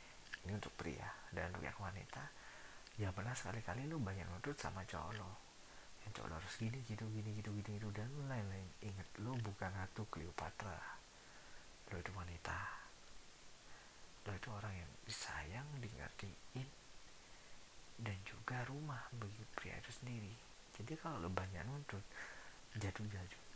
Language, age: Indonesian, 50-69